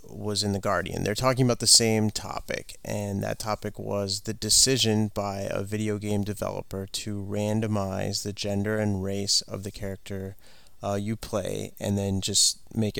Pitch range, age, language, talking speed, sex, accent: 95-110 Hz, 30-49, English, 170 wpm, male, American